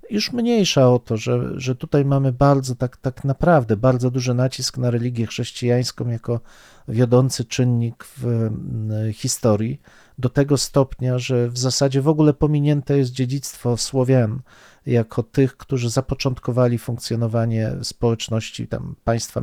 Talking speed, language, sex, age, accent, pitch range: 135 wpm, Polish, male, 40-59, native, 120-145 Hz